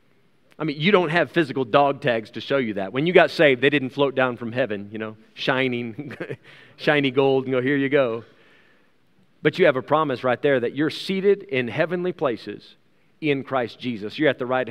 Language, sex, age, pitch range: English, male, 40-59, 130-170 Hz